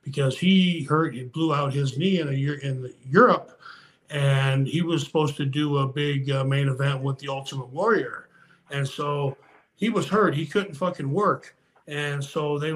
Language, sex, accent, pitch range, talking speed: English, male, American, 140-160 Hz, 190 wpm